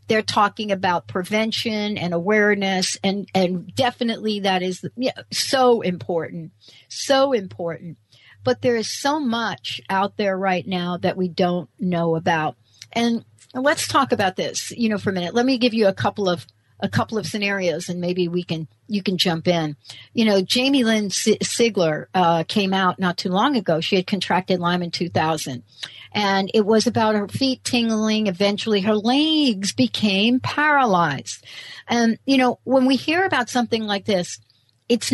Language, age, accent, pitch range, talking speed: English, 60-79, American, 175-230 Hz, 175 wpm